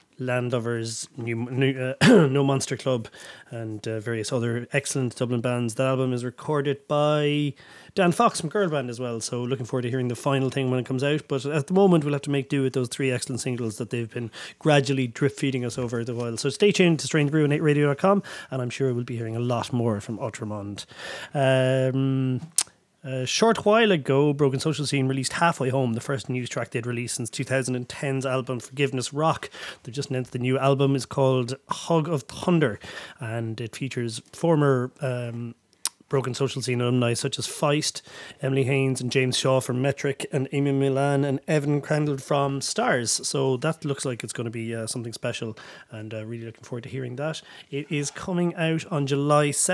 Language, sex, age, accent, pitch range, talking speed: English, male, 30-49, Irish, 120-145 Hz, 200 wpm